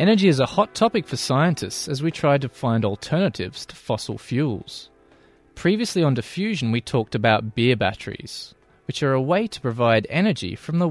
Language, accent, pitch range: English, Australian, 110-165 Hz